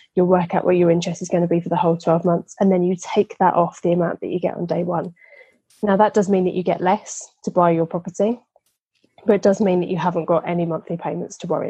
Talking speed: 275 wpm